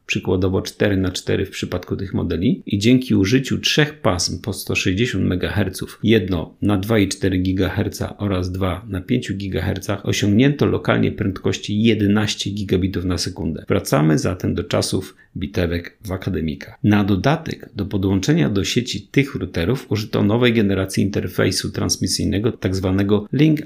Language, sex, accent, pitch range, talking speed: Polish, male, native, 95-110 Hz, 130 wpm